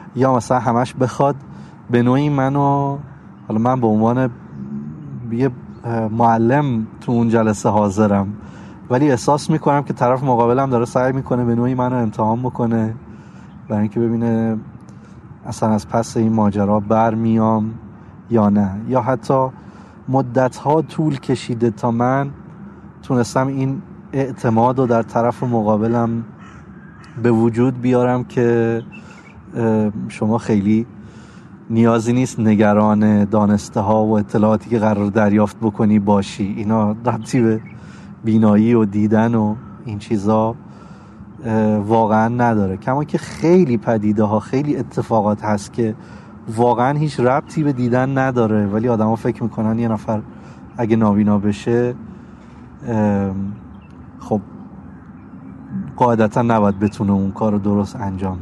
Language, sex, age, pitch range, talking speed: Persian, male, 30-49, 110-125 Hz, 120 wpm